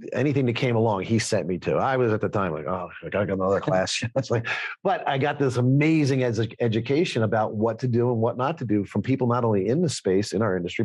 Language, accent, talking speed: English, American, 245 wpm